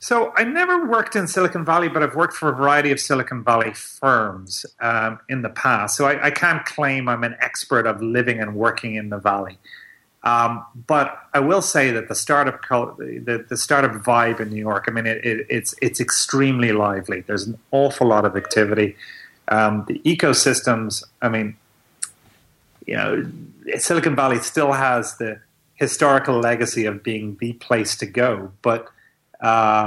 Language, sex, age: English, male, 30-49